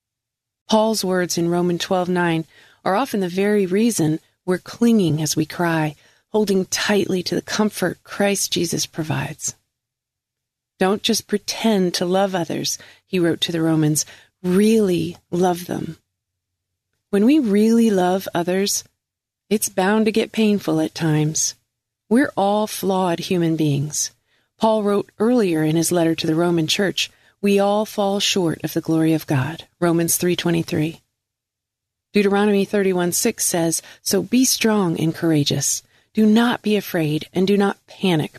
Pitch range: 150-200 Hz